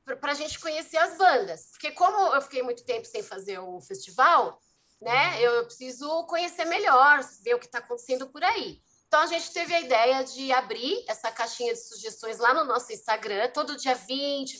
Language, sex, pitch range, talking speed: Portuguese, female, 245-340 Hz, 195 wpm